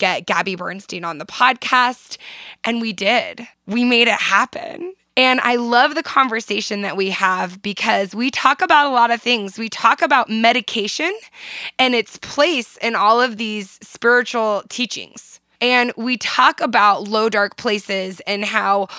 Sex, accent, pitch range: female, American, 205-255 Hz